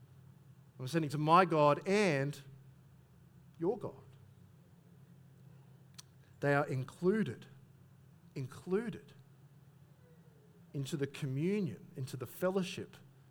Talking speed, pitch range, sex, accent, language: 80 wpm, 135-165 Hz, male, Australian, English